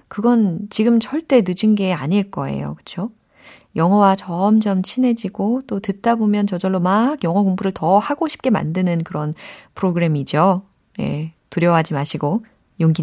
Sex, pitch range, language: female, 170-265 Hz, Korean